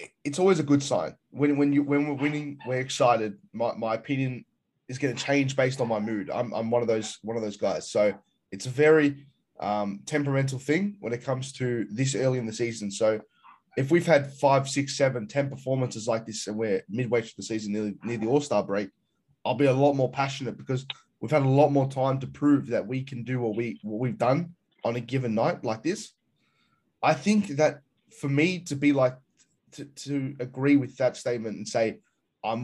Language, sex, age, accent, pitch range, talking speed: English, male, 10-29, Australian, 115-145 Hz, 220 wpm